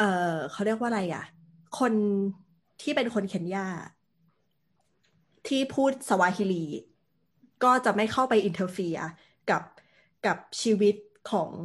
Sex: female